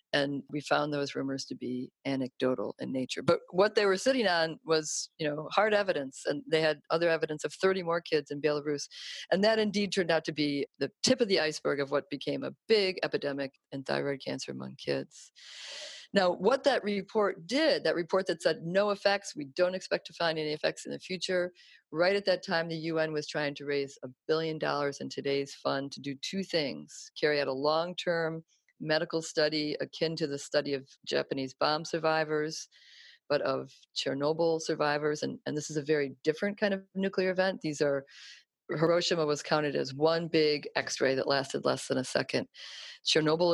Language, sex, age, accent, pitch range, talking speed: English, female, 40-59, American, 140-180 Hz, 195 wpm